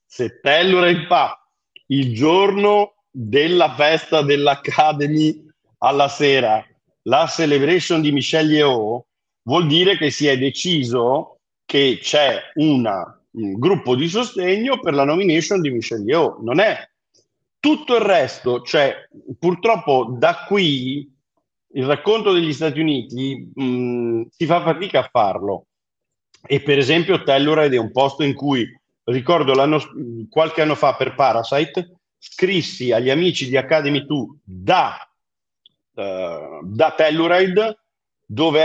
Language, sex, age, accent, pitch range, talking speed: Italian, male, 50-69, native, 135-175 Hz, 125 wpm